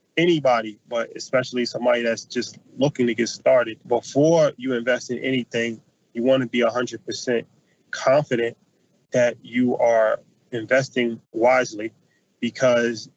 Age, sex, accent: 20-39, male, American